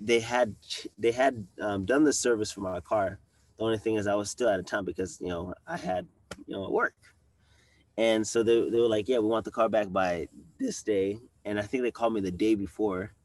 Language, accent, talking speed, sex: English, American, 240 wpm, male